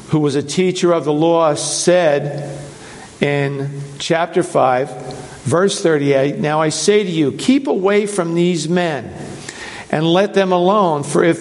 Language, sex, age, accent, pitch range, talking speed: English, male, 50-69, American, 145-185 Hz, 155 wpm